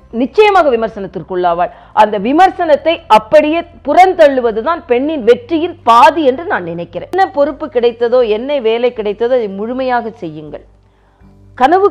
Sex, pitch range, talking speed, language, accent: female, 205-295 Hz, 110 wpm, Tamil, native